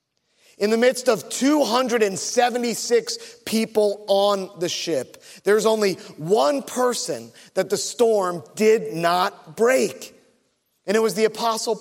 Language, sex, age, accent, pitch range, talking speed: English, male, 30-49, American, 190-235 Hz, 120 wpm